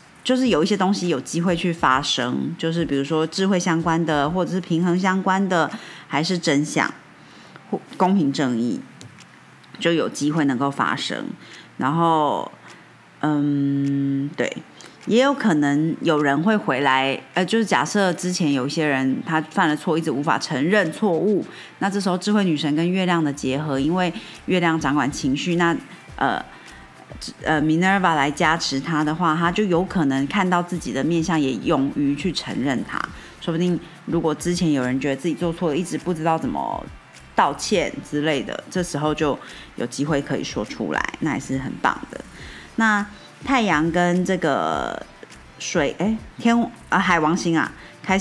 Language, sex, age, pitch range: Chinese, female, 30-49, 145-185 Hz